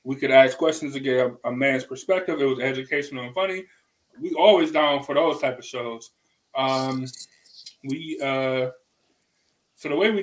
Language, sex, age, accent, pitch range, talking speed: English, male, 20-39, American, 130-180 Hz, 175 wpm